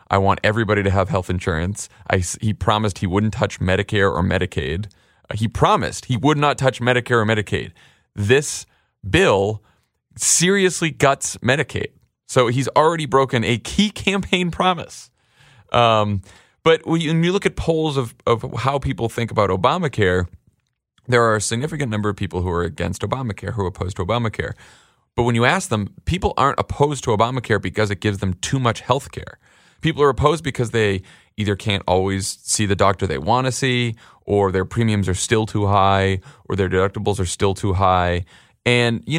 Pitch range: 100-130 Hz